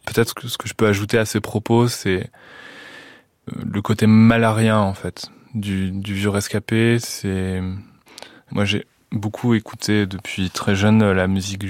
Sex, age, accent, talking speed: male, 20-39, French, 155 wpm